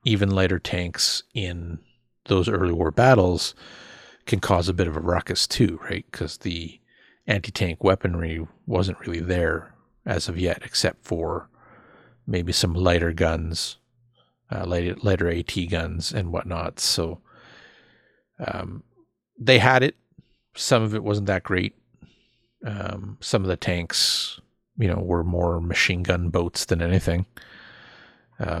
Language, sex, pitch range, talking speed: English, male, 85-110 Hz, 140 wpm